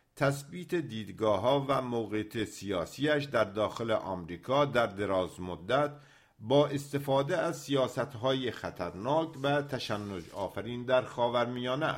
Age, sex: 50-69, male